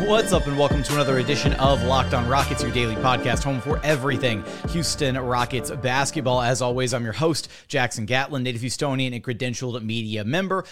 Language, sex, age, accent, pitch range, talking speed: English, male, 30-49, American, 135-190 Hz, 185 wpm